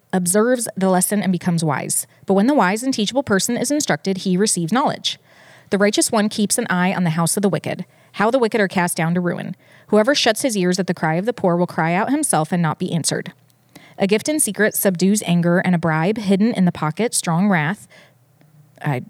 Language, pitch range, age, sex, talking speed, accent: English, 165-210 Hz, 20-39, female, 225 wpm, American